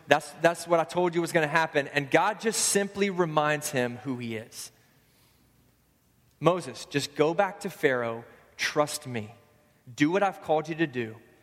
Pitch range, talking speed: 135-170 Hz, 175 wpm